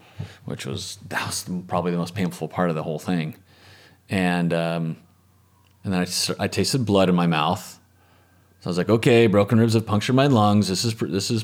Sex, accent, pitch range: male, American, 85-100 Hz